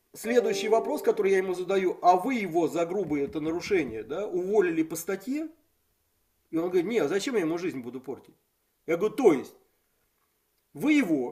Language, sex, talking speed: Russian, male, 180 wpm